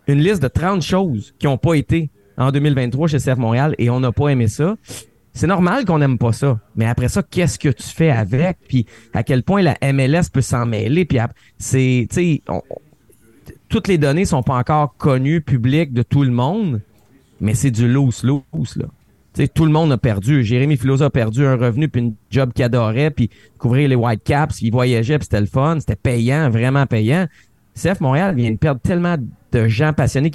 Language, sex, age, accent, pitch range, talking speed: French, male, 30-49, Canadian, 125-160 Hz, 205 wpm